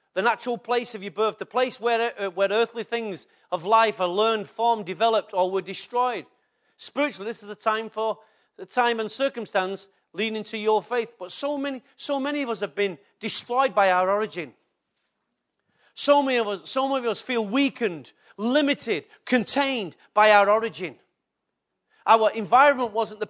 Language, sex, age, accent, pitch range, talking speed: English, male, 40-59, British, 215-260 Hz, 175 wpm